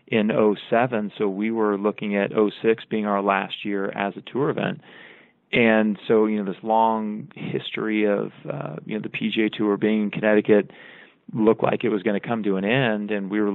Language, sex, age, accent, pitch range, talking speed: English, male, 30-49, American, 100-110 Hz, 205 wpm